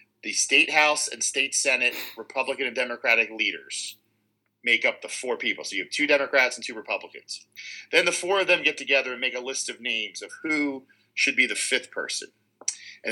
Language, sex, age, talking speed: English, male, 40-59, 200 wpm